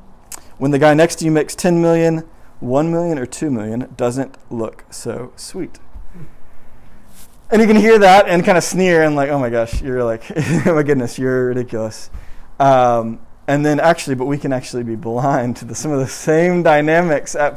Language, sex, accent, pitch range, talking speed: English, male, American, 120-155 Hz, 195 wpm